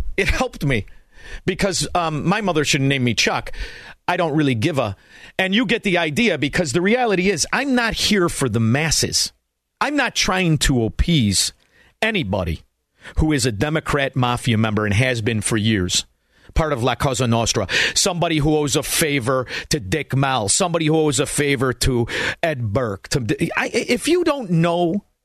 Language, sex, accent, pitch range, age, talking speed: English, male, American, 130-175 Hz, 40-59, 175 wpm